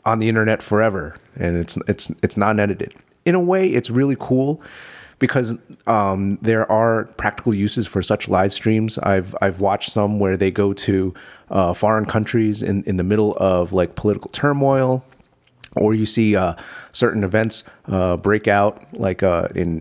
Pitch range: 95-125 Hz